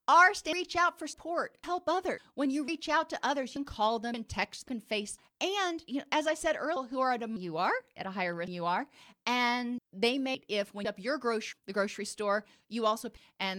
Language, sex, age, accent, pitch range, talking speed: English, female, 30-49, American, 205-275 Hz, 250 wpm